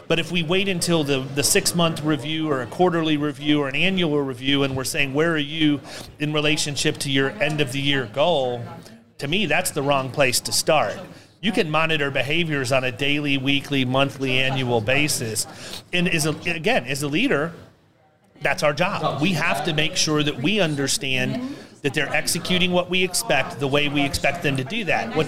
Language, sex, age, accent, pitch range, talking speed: English, male, 30-49, American, 140-175 Hz, 200 wpm